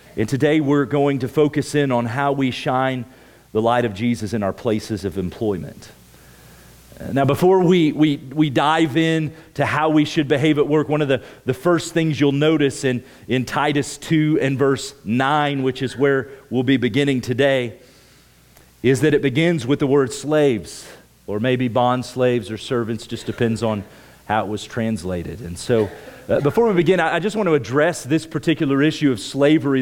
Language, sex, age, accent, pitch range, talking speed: English, male, 40-59, American, 125-155 Hz, 185 wpm